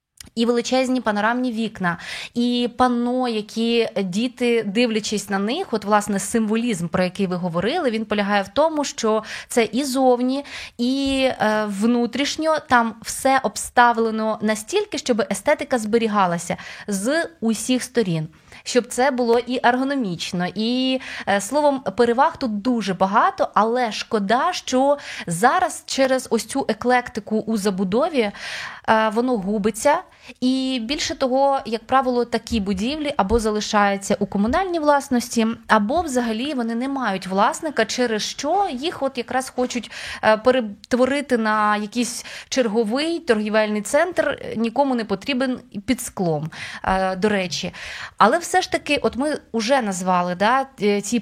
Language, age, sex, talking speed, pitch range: Ukrainian, 20-39, female, 125 wpm, 210-260 Hz